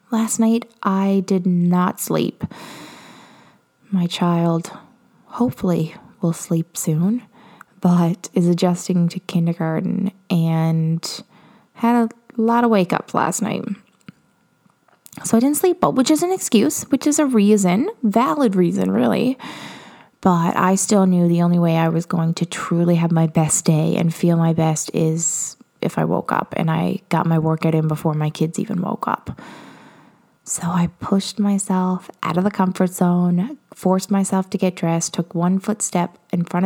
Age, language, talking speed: 20-39, English, 155 wpm